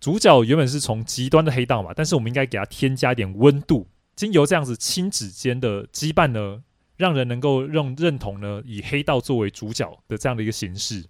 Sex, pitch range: male, 105-145 Hz